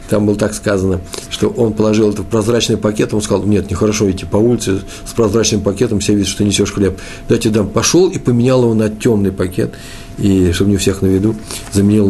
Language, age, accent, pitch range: Russian, 50-69, native, 95-110 Hz